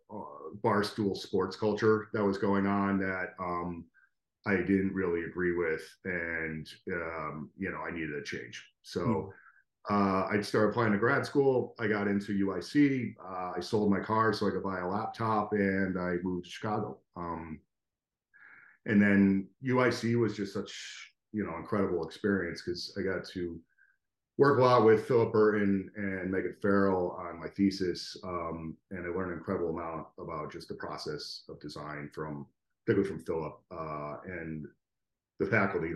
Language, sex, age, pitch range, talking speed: English, male, 40-59, 85-105 Hz, 165 wpm